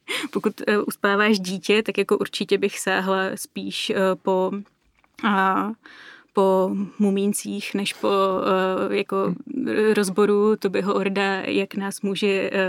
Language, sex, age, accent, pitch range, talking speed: Czech, female, 20-39, native, 195-225 Hz, 120 wpm